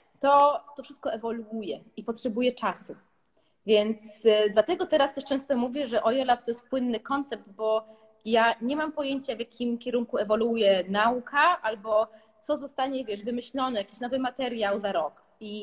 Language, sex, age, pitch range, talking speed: Polish, female, 20-39, 205-265 Hz, 160 wpm